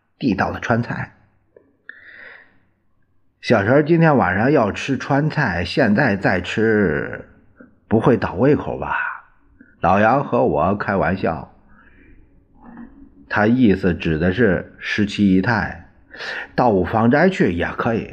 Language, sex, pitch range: Chinese, male, 85-110 Hz